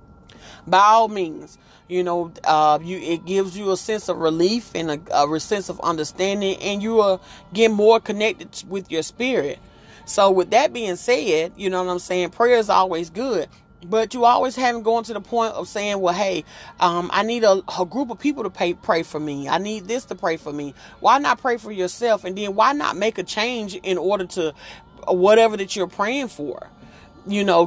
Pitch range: 180-220 Hz